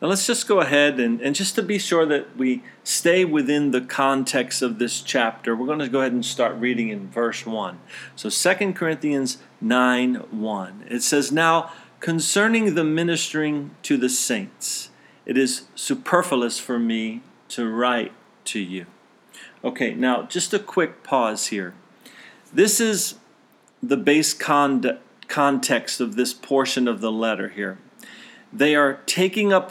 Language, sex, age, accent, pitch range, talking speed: English, male, 40-59, American, 120-160 Hz, 155 wpm